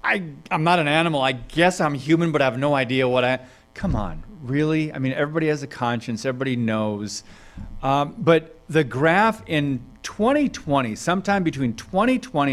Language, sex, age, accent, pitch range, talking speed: English, male, 40-59, American, 130-160 Hz, 170 wpm